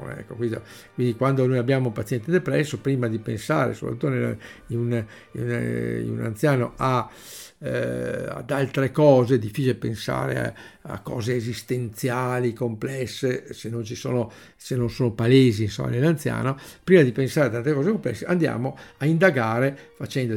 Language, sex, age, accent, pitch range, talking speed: Italian, male, 50-69, native, 115-140 Hz, 155 wpm